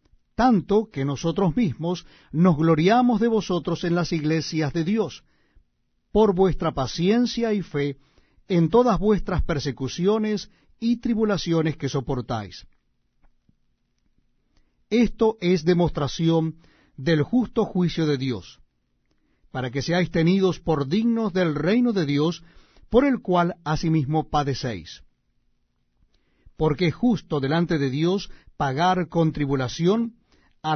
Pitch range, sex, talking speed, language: 150-200 Hz, male, 115 wpm, Spanish